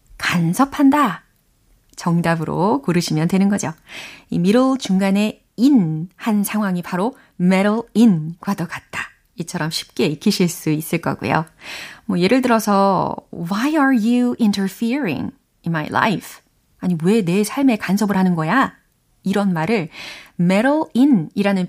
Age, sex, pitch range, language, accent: 30-49, female, 175-250 Hz, Korean, native